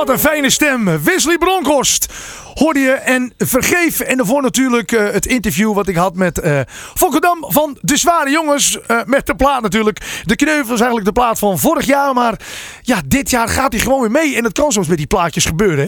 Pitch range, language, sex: 215-295 Hz, Dutch, male